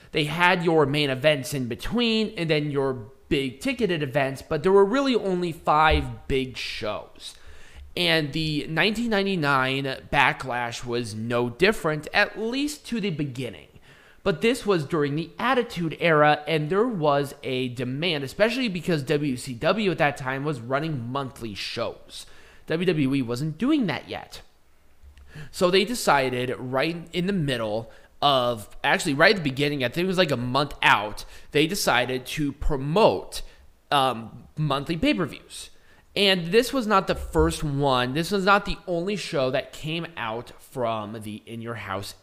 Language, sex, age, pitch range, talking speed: English, male, 30-49, 130-180 Hz, 160 wpm